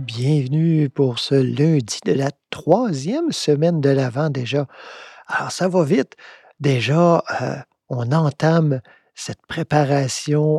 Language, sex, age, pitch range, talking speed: French, male, 50-69, 130-160 Hz, 120 wpm